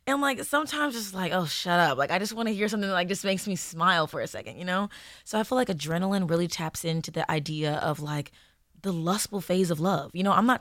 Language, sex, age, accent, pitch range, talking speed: English, female, 20-39, American, 160-200 Hz, 265 wpm